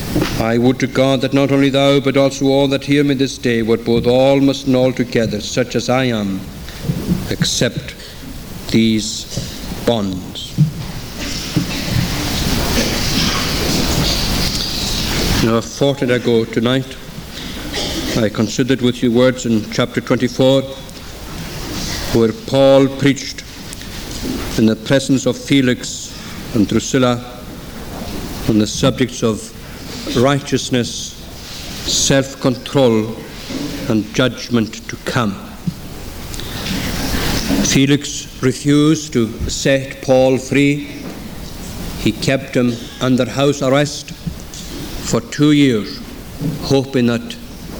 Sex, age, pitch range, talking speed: male, 60-79, 115-140 Hz, 100 wpm